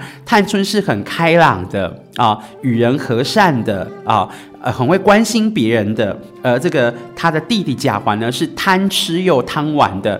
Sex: male